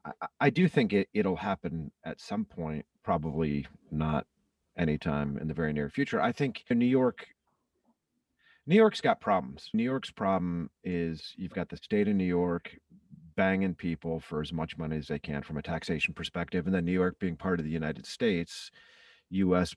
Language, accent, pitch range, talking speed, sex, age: English, American, 75-95 Hz, 180 wpm, male, 40-59